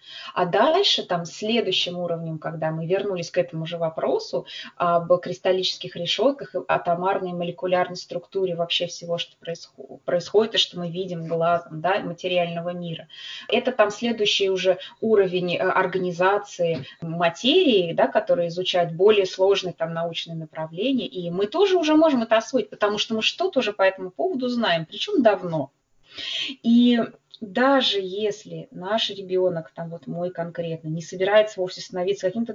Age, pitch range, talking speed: 20-39, 170-210 Hz, 145 wpm